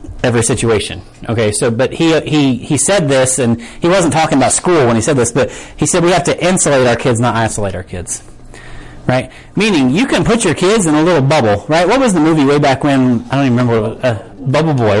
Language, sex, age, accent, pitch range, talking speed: English, male, 30-49, American, 125-180 Hz, 240 wpm